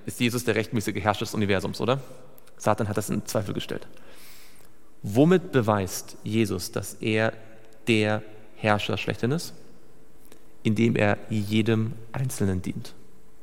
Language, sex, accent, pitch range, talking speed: German, male, German, 105-140 Hz, 125 wpm